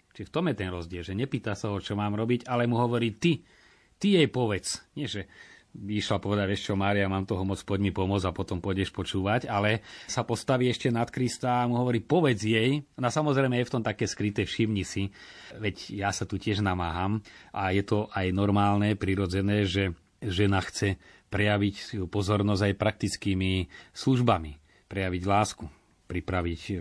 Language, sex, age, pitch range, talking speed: Slovak, male, 30-49, 95-120 Hz, 185 wpm